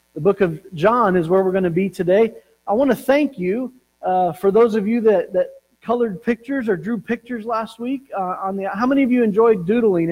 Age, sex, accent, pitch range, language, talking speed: 40-59, male, American, 170-220 Hz, English, 230 wpm